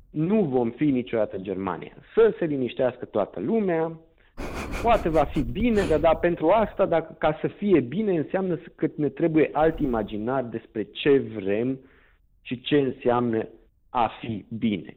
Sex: male